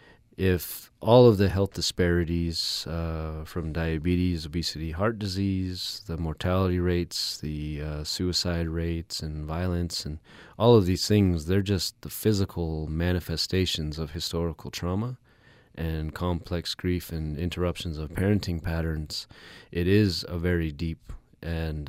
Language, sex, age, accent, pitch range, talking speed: English, male, 30-49, American, 80-95 Hz, 130 wpm